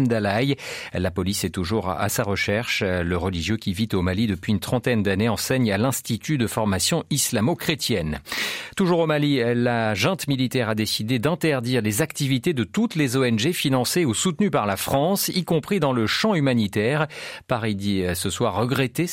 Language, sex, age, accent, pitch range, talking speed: French, male, 40-59, French, 105-140 Hz, 175 wpm